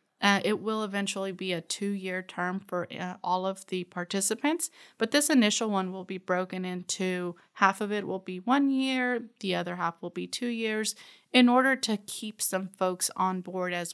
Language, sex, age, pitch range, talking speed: English, female, 30-49, 180-220 Hz, 195 wpm